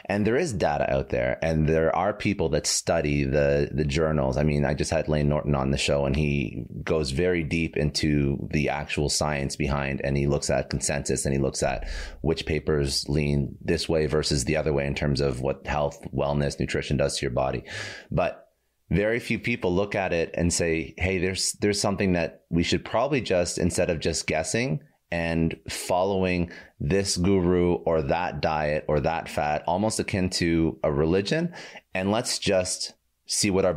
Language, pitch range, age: English, 75-95 Hz, 30-49